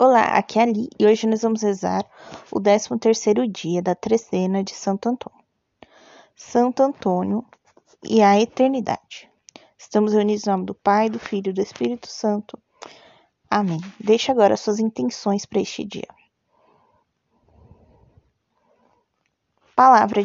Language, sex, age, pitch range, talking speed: Portuguese, female, 20-39, 195-230 Hz, 135 wpm